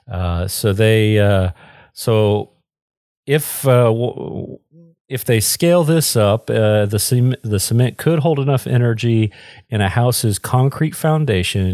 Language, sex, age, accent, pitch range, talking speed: English, male, 40-59, American, 95-120 Hz, 125 wpm